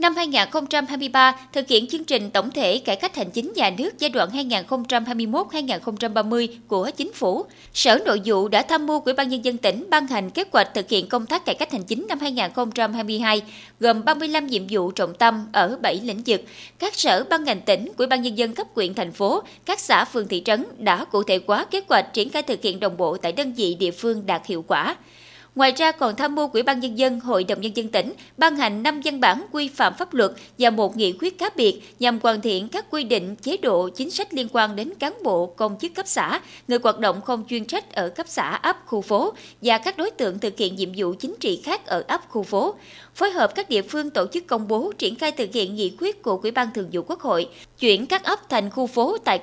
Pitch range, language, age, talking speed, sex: 220-315 Hz, Vietnamese, 20-39, 240 wpm, female